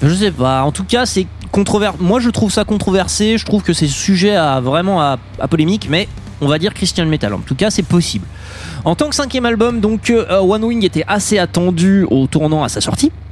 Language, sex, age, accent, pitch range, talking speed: French, male, 20-39, French, 130-205 Hz, 230 wpm